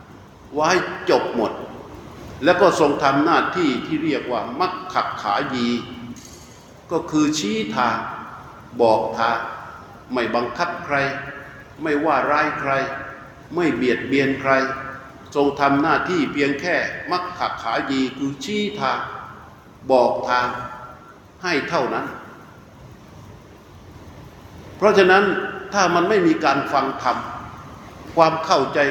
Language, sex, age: Thai, male, 60-79